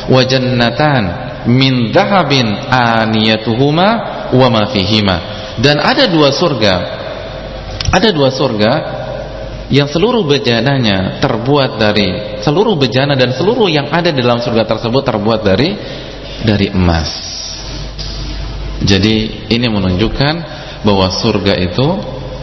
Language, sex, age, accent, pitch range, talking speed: English, male, 30-49, Indonesian, 105-130 Hz, 95 wpm